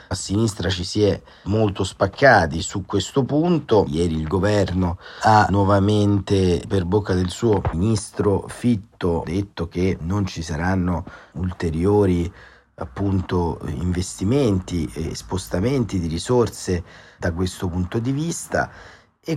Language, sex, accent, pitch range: Italian, male, native, 85-100 Hz